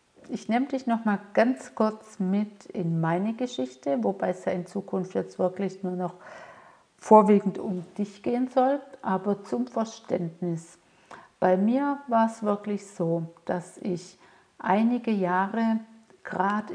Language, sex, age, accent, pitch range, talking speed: German, female, 60-79, German, 185-215 Hz, 140 wpm